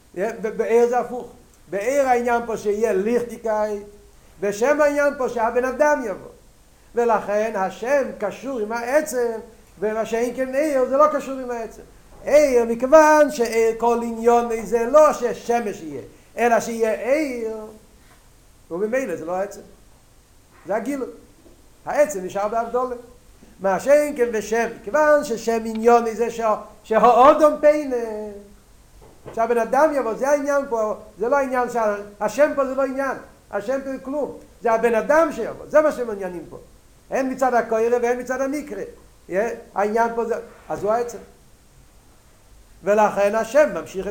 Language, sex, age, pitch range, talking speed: Hebrew, male, 50-69, 210-260 Hz, 135 wpm